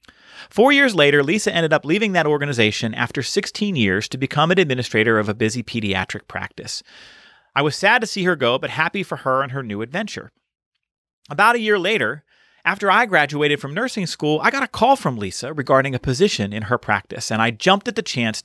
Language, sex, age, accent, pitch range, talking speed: English, male, 40-59, American, 120-175 Hz, 210 wpm